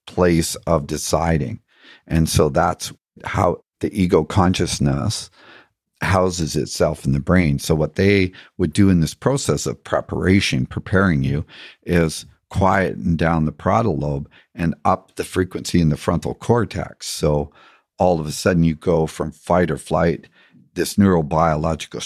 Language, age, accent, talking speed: English, 50-69, American, 145 wpm